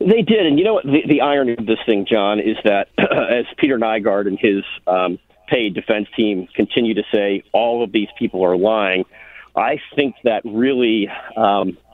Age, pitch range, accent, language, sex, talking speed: 40-59, 105-120 Hz, American, English, male, 195 wpm